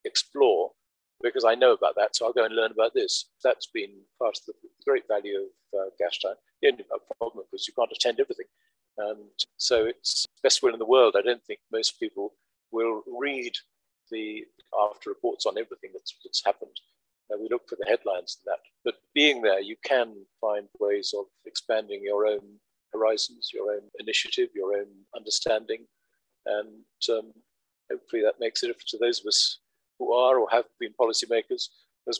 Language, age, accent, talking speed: English, 50-69, British, 185 wpm